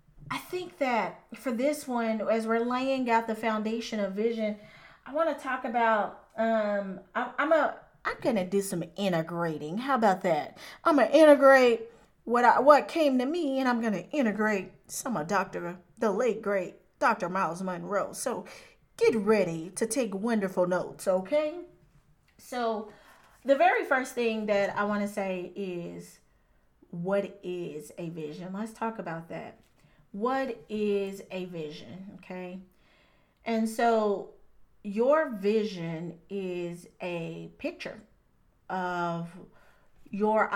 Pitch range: 180-230 Hz